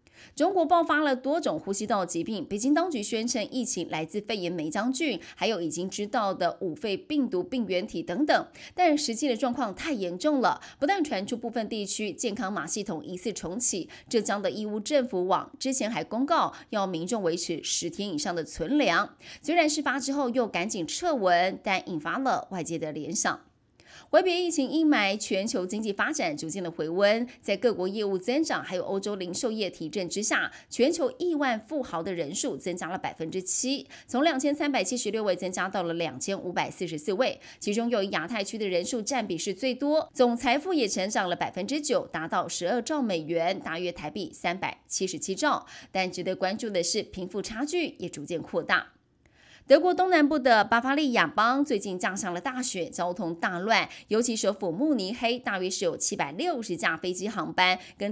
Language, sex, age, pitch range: Chinese, female, 20-39, 180-265 Hz